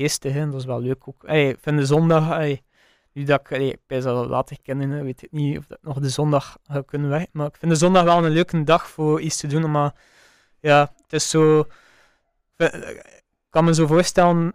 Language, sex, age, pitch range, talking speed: Dutch, male, 20-39, 145-160 Hz, 225 wpm